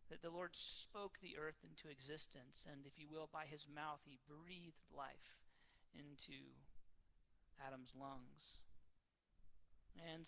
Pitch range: 125-170 Hz